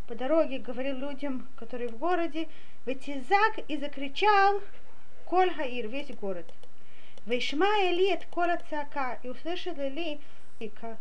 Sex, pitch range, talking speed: female, 255-340 Hz, 125 wpm